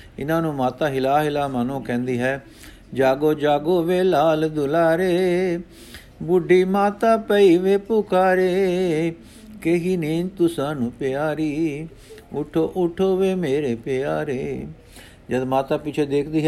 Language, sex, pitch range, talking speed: Punjabi, male, 135-170 Hz, 115 wpm